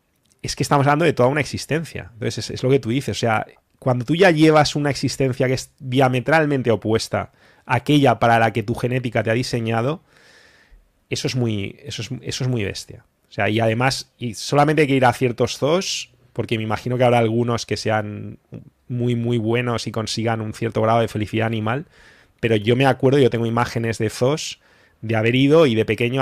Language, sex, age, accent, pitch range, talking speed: English, male, 20-39, Spanish, 115-140 Hz, 210 wpm